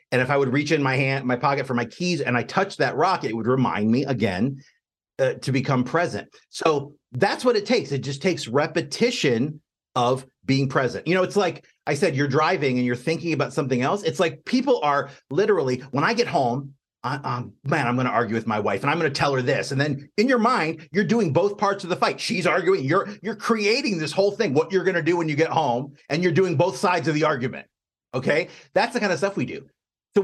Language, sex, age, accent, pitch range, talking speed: English, male, 40-59, American, 135-190 Hz, 245 wpm